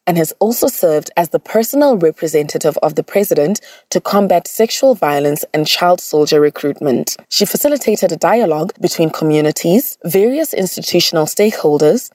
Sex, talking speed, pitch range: female, 140 wpm, 160-220 Hz